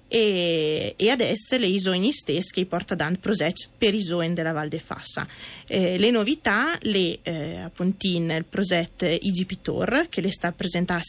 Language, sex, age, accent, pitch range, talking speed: Italian, female, 20-39, native, 170-195 Hz, 155 wpm